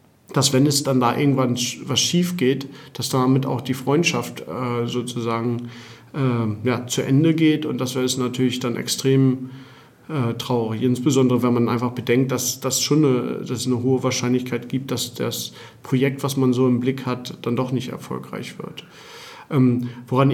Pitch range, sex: 125-145 Hz, male